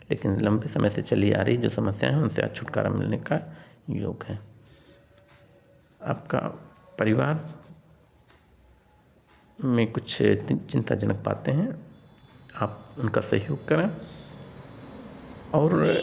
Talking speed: 110 wpm